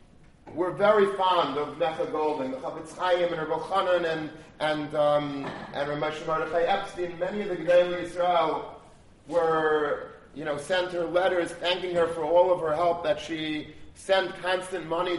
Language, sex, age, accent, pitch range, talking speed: English, male, 40-59, American, 145-175 Hz, 165 wpm